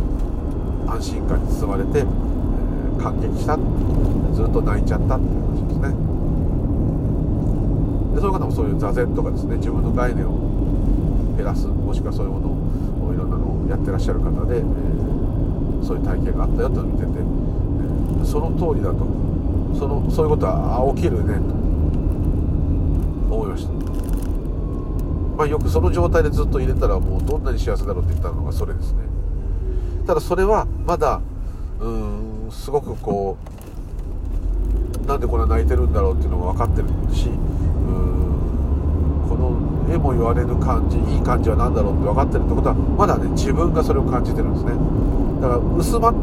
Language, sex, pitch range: Japanese, male, 75-90 Hz